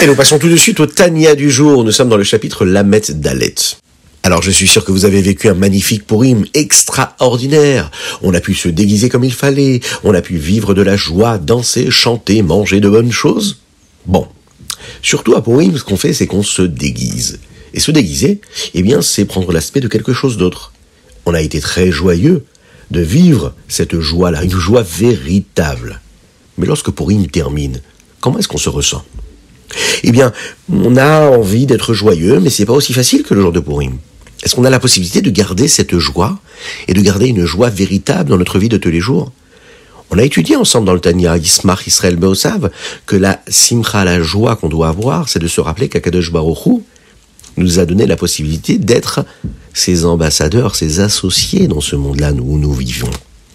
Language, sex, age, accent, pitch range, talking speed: French, male, 50-69, French, 85-120 Hz, 195 wpm